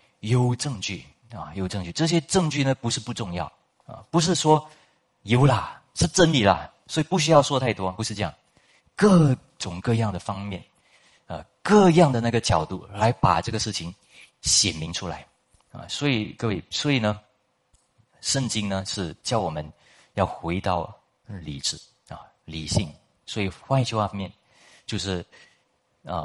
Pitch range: 85-120 Hz